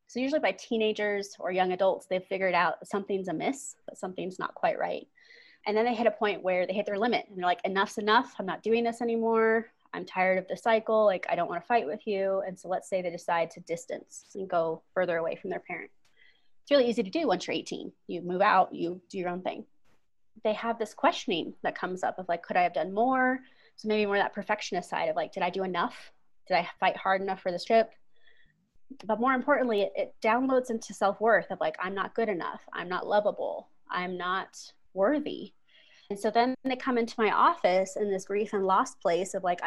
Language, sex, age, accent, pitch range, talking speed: English, female, 20-39, American, 185-230 Hz, 230 wpm